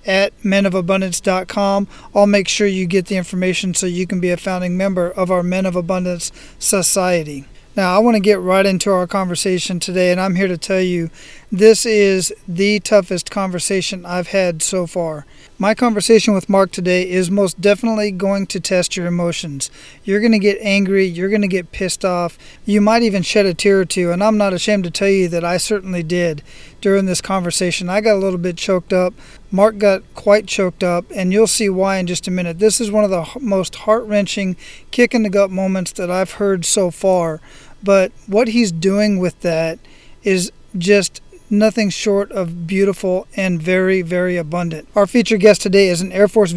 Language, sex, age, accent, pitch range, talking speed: English, male, 40-59, American, 180-205 Hz, 195 wpm